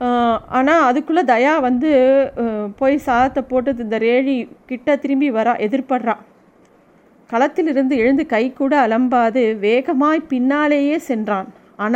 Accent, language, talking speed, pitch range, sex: native, Tamil, 110 wpm, 215-265 Hz, female